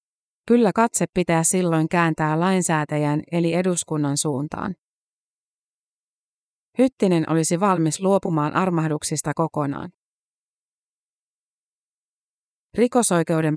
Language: Finnish